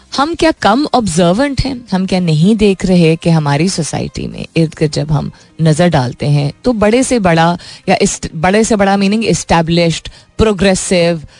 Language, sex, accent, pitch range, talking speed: Hindi, female, native, 150-200 Hz, 175 wpm